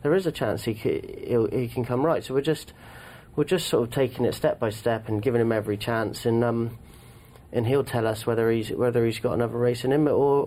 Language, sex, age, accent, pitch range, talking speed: English, male, 30-49, British, 100-130 Hz, 240 wpm